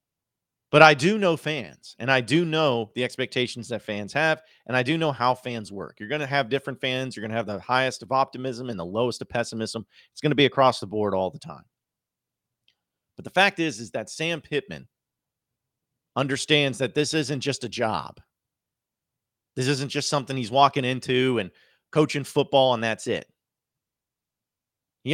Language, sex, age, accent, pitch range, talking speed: English, male, 40-59, American, 115-150 Hz, 190 wpm